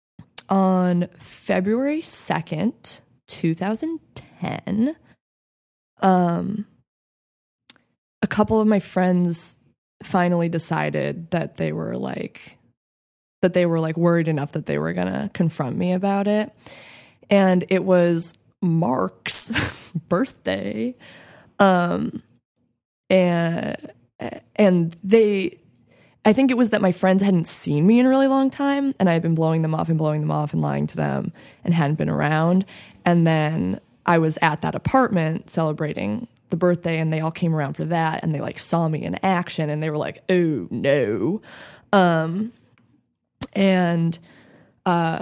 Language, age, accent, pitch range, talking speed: English, 20-39, American, 160-200 Hz, 140 wpm